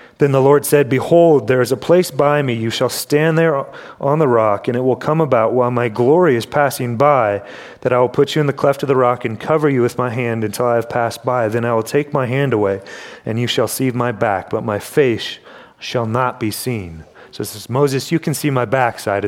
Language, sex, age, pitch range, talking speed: English, male, 30-49, 115-145 Hz, 250 wpm